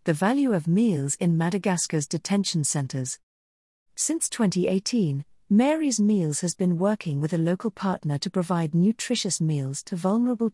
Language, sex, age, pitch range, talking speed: English, female, 50-69, 155-205 Hz, 140 wpm